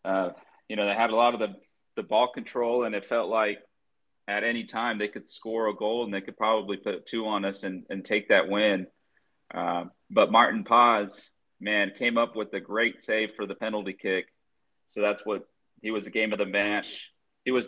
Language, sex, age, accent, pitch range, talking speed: English, male, 30-49, American, 100-115 Hz, 215 wpm